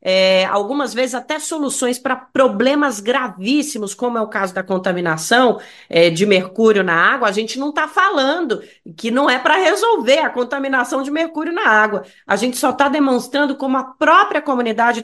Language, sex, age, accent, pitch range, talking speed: Portuguese, female, 40-59, Brazilian, 220-290 Hz, 170 wpm